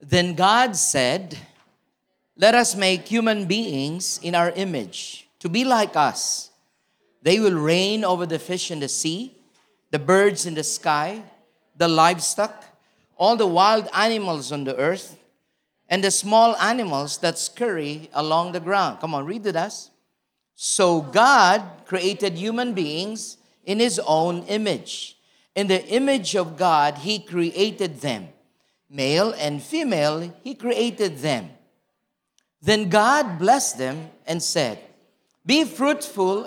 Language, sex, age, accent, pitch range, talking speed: English, male, 40-59, Filipino, 160-220 Hz, 135 wpm